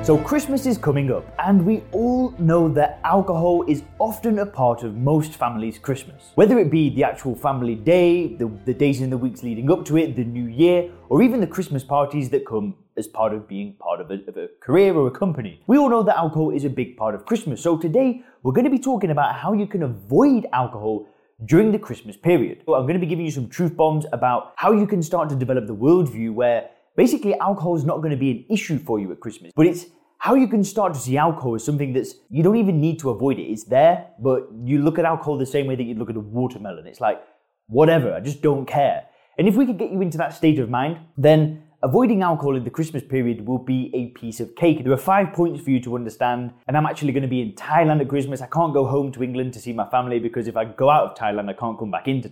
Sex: male